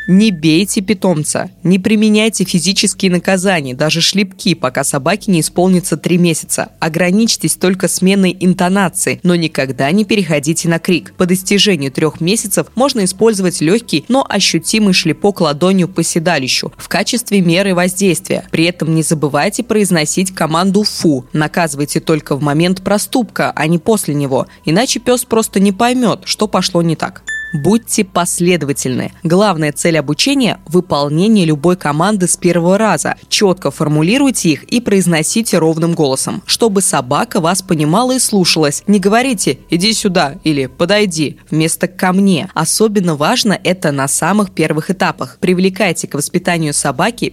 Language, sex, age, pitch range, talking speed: Russian, female, 20-39, 160-205 Hz, 140 wpm